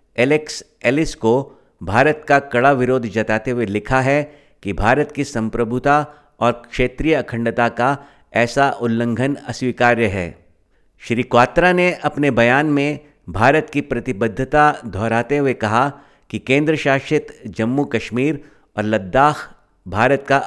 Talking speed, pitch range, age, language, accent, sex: 130 wpm, 115-145 Hz, 50-69, Hindi, native, male